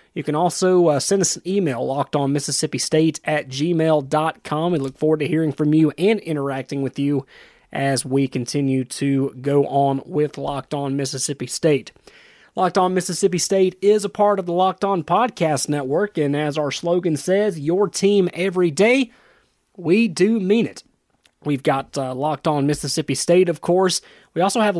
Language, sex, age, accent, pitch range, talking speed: English, male, 30-49, American, 140-185 Hz, 180 wpm